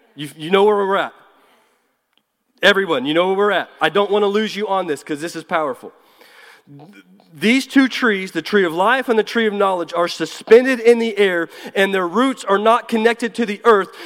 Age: 30-49